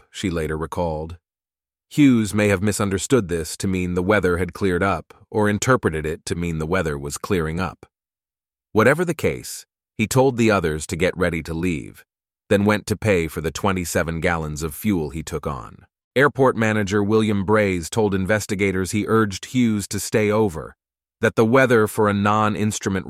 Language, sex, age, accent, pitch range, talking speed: English, male, 30-49, American, 85-105 Hz, 175 wpm